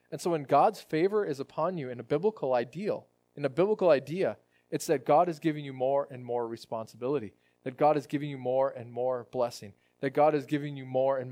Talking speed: 225 wpm